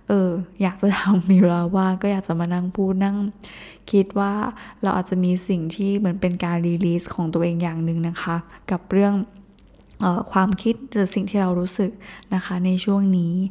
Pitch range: 180-205 Hz